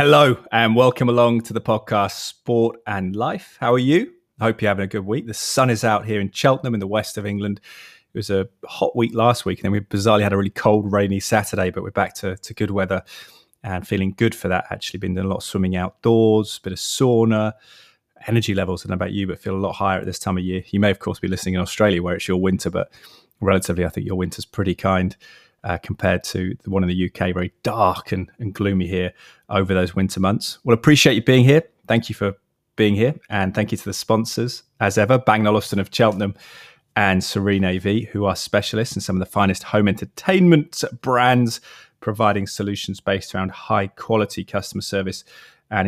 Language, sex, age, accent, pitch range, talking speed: English, male, 20-39, British, 95-110 Hz, 225 wpm